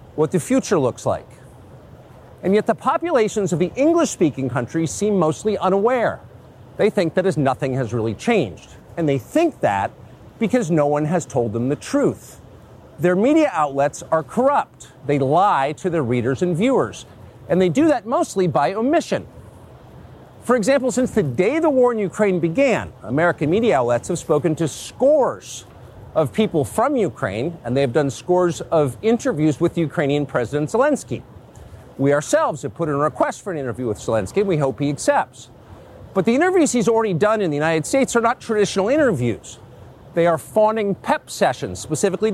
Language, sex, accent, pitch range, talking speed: English, male, American, 140-225 Hz, 175 wpm